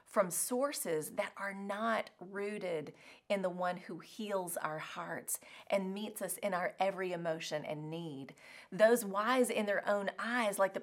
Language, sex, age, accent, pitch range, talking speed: English, female, 30-49, American, 170-230 Hz, 165 wpm